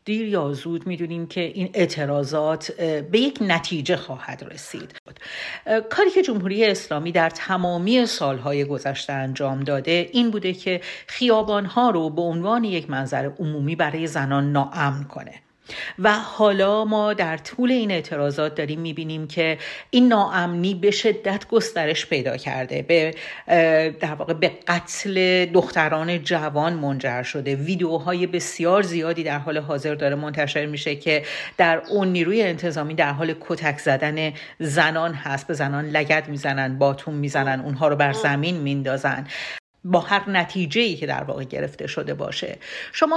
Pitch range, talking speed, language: 150-200 Hz, 145 wpm, Persian